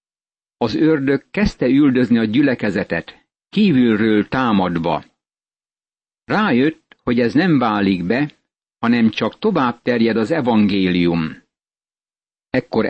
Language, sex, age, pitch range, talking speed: Hungarian, male, 60-79, 110-145 Hz, 100 wpm